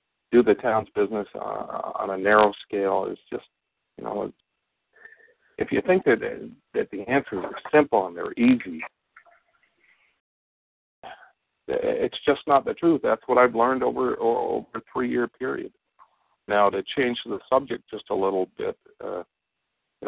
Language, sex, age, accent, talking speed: English, male, 50-69, American, 150 wpm